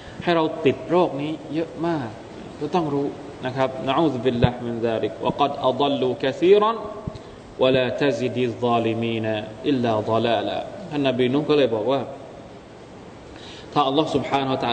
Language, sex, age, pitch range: Thai, male, 20-39, 140-185 Hz